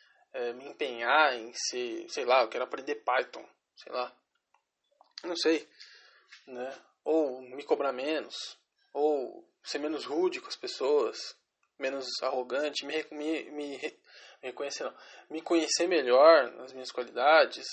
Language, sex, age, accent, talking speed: English, male, 20-39, Brazilian, 125 wpm